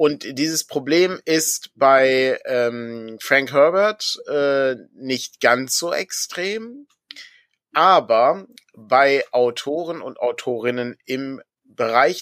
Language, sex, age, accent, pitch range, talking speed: German, male, 30-49, German, 135-205 Hz, 100 wpm